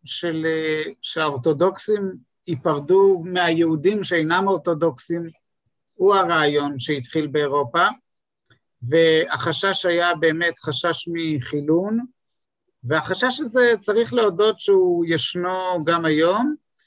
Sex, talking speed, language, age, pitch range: male, 80 wpm, Hebrew, 50-69, 155-190 Hz